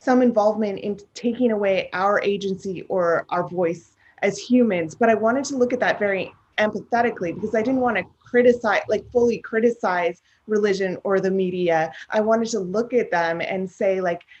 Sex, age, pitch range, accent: female, 30-49, 190-230 Hz, American